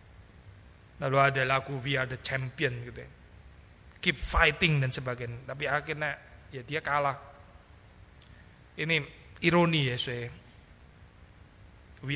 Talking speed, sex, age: 115 wpm, male, 30-49